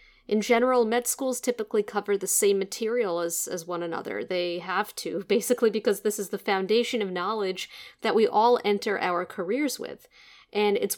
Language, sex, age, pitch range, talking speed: English, female, 40-59, 180-235 Hz, 180 wpm